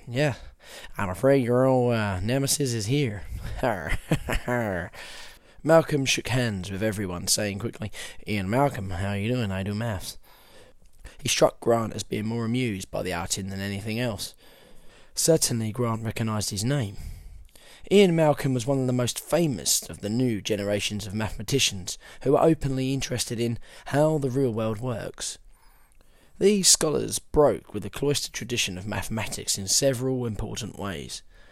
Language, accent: English, British